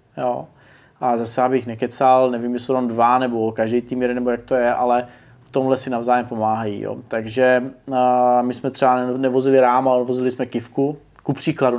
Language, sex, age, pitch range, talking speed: Czech, male, 20-39, 120-140 Hz, 195 wpm